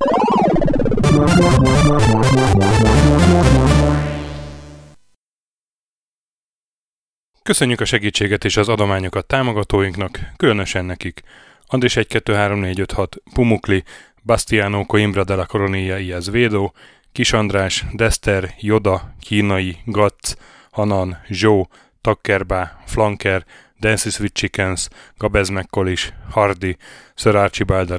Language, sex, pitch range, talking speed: Hungarian, male, 95-110 Hz, 70 wpm